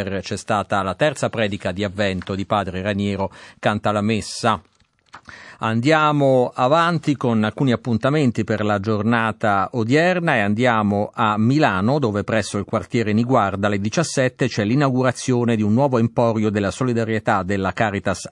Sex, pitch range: male, 100-120 Hz